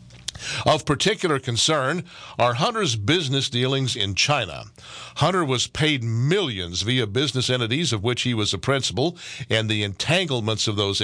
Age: 50-69